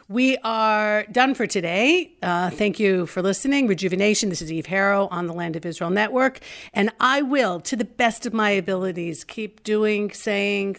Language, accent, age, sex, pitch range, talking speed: English, American, 50-69, female, 170-215 Hz, 185 wpm